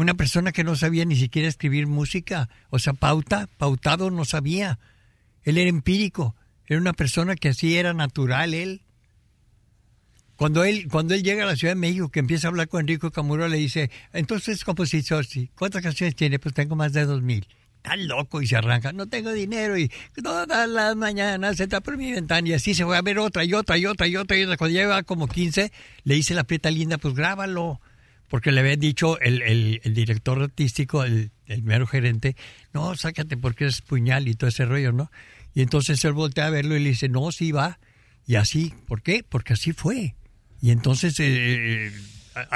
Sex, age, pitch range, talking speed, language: male, 60-79, 120-170 Hz, 205 wpm, Spanish